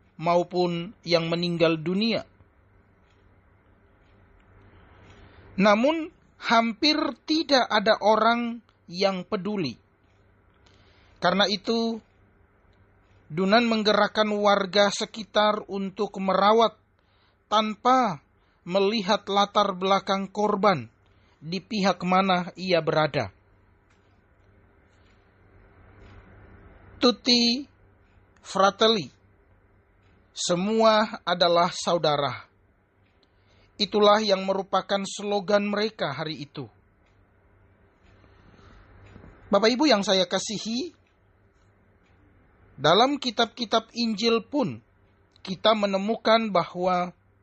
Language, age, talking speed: Indonesian, 40-59, 65 wpm